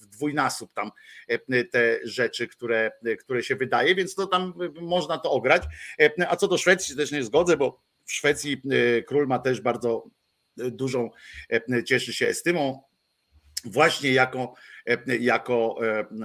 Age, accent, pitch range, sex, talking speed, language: 50-69, native, 105-145 Hz, male, 140 wpm, Polish